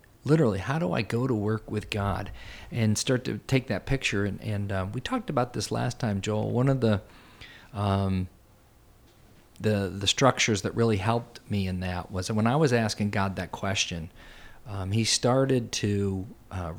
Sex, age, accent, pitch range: male, 40-59, American, 95-115 Hz